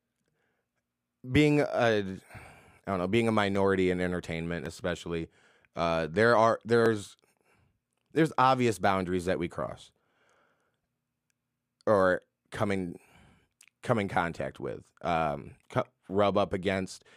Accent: American